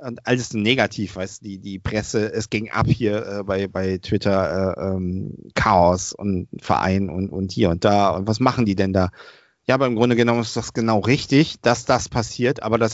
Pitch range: 110-125 Hz